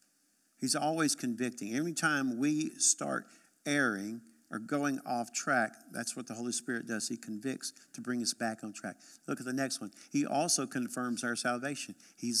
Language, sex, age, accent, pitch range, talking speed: English, male, 50-69, American, 130-205 Hz, 175 wpm